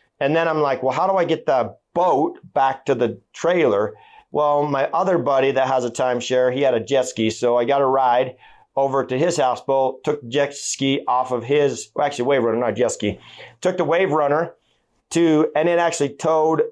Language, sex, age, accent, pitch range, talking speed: English, male, 30-49, American, 135-160 Hz, 210 wpm